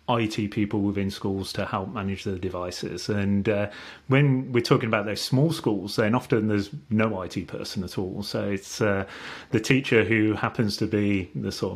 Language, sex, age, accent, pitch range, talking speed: English, male, 30-49, British, 100-115 Hz, 190 wpm